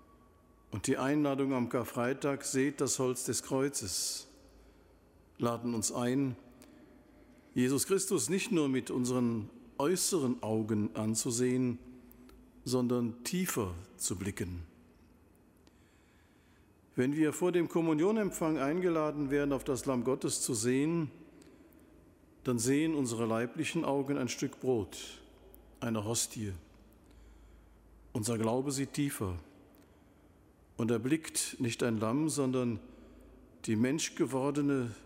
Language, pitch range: German, 110-140 Hz